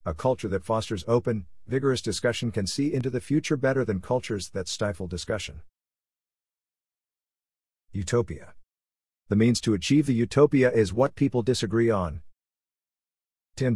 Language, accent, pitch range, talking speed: English, American, 90-125 Hz, 135 wpm